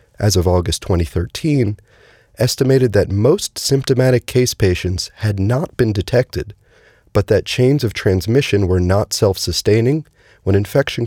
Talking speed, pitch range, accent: 130 wpm, 95-120 Hz, American